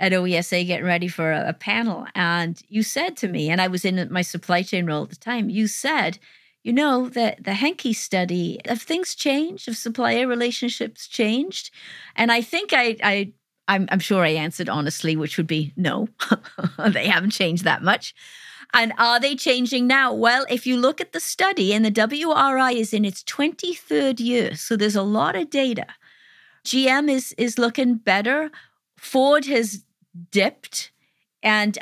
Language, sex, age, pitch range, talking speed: English, female, 40-59, 175-230 Hz, 170 wpm